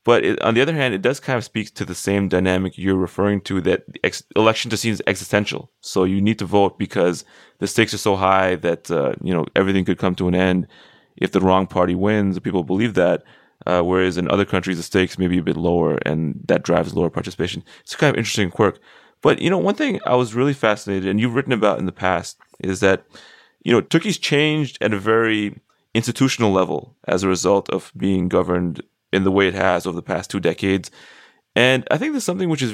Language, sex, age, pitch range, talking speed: English, male, 20-39, 95-115 Hz, 235 wpm